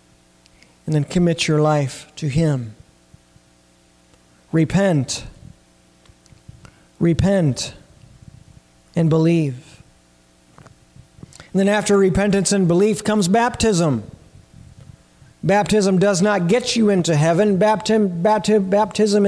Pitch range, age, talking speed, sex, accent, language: 165-220 Hz, 40-59, 85 wpm, male, American, English